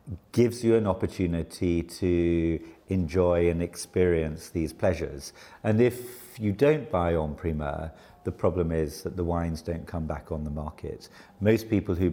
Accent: British